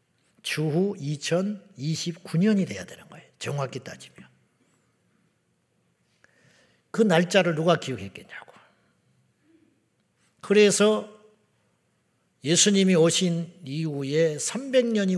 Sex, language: male, Korean